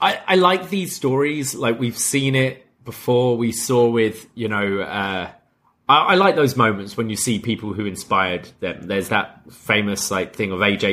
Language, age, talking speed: English, 30-49, 190 wpm